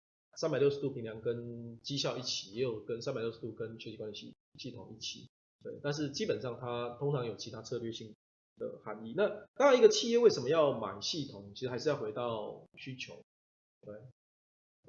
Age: 20-39